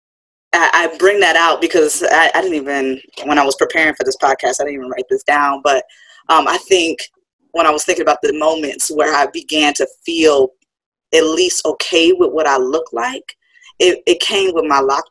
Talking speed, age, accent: 205 wpm, 20-39, American